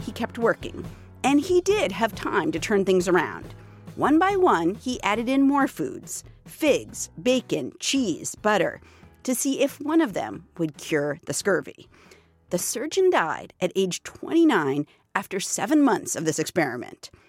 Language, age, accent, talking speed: English, 50-69, American, 155 wpm